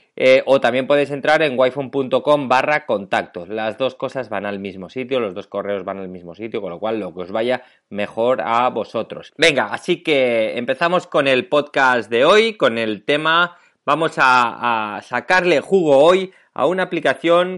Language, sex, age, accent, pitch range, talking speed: Spanish, male, 30-49, Spanish, 115-160 Hz, 180 wpm